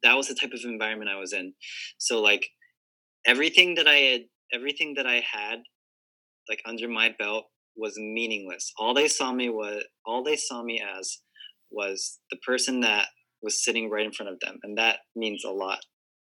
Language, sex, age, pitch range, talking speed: English, male, 20-39, 110-135 Hz, 190 wpm